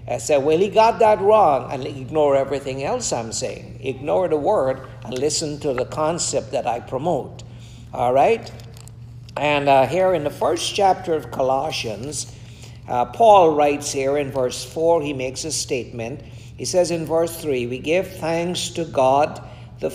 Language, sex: English, male